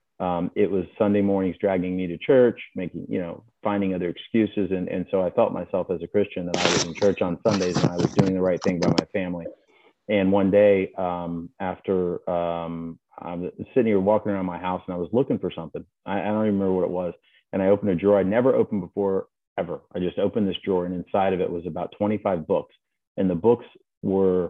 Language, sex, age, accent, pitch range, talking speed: English, male, 30-49, American, 85-100 Hz, 235 wpm